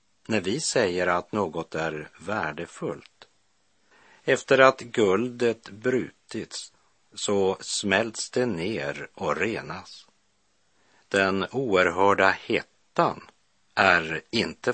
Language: Swedish